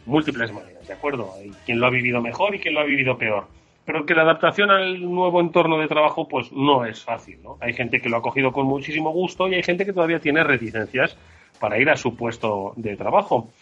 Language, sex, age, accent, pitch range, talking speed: Spanish, male, 30-49, Spanish, 115-155 Hz, 235 wpm